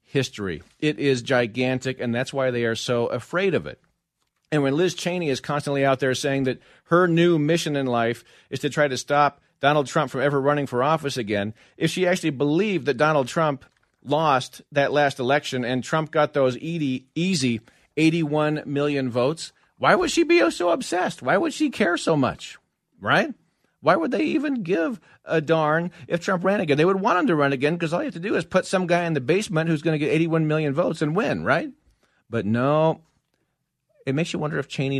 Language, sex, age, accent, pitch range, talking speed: English, male, 40-59, American, 130-160 Hz, 210 wpm